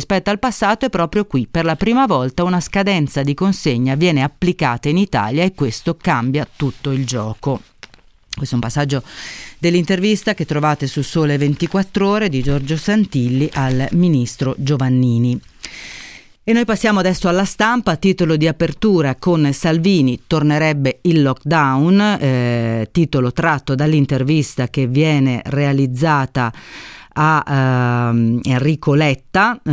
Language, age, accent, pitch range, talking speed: Italian, 40-59, native, 130-170 Hz, 135 wpm